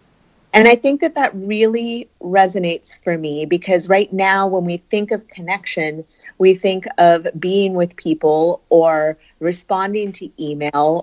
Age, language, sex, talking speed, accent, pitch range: 30-49, English, female, 145 wpm, American, 165-210 Hz